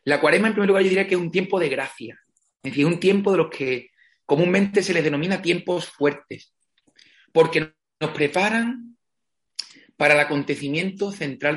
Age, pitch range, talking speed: 30-49, 130-165 Hz, 170 wpm